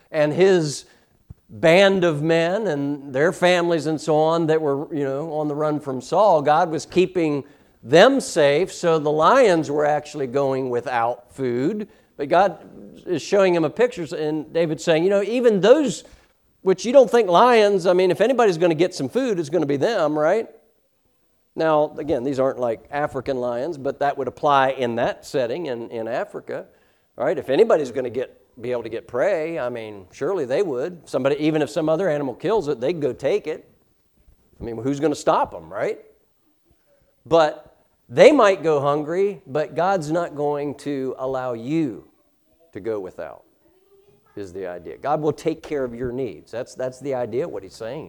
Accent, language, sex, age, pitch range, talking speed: American, English, male, 50-69, 135-180 Hz, 190 wpm